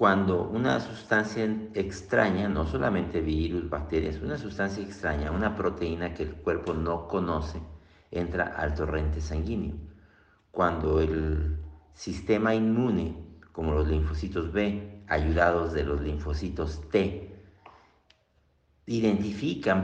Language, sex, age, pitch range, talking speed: Spanish, male, 50-69, 80-105 Hz, 110 wpm